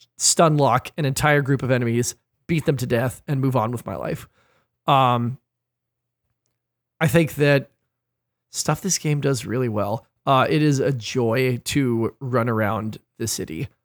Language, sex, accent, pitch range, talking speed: English, male, American, 125-150 Hz, 160 wpm